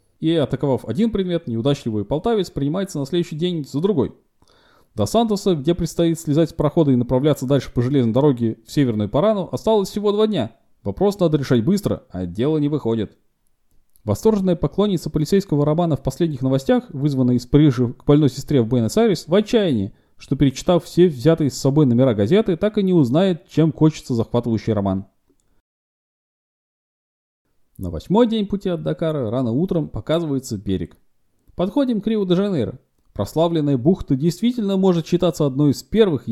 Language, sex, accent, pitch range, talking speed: Russian, male, native, 120-175 Hz, 160 wpm